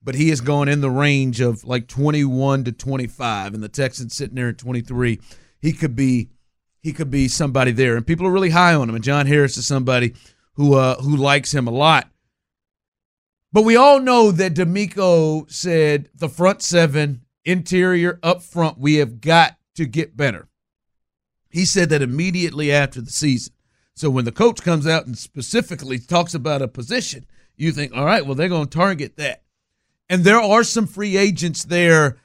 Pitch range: 130-175 Hz